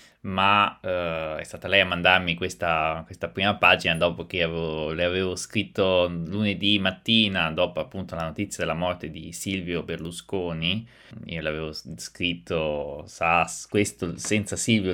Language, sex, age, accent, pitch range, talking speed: Italian, male, 20-39, native, 85-95 Hz, 135 wpm